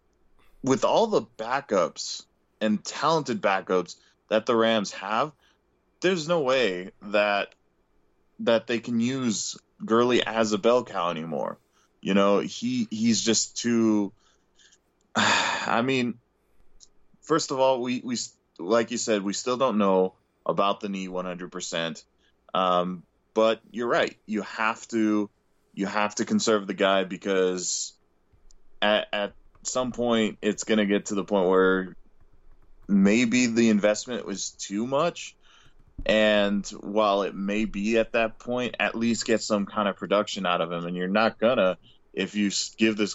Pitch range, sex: 95-115 Hz, male